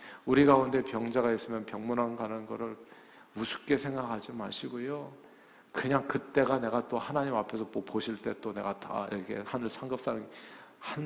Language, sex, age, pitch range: Korean, male, 50-69, 120-160 Hz